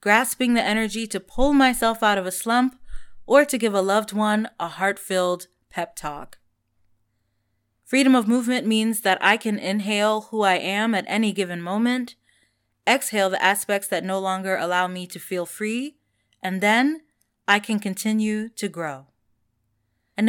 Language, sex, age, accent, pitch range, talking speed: English, female, 20-39, American, 160-220 Hz, 160 wpm